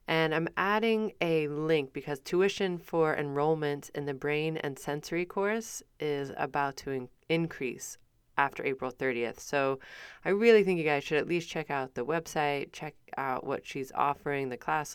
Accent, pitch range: American, 130-160 Hz